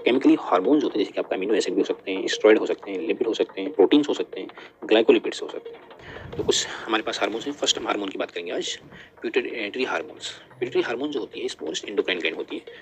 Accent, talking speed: native, 245 wpm